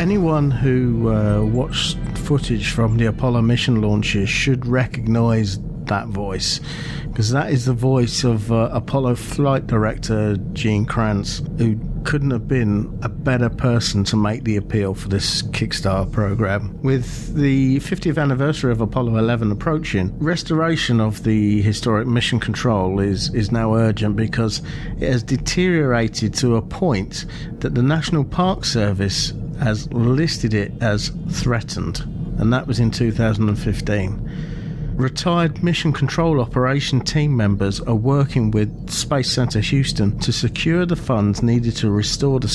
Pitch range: 110-140 Hz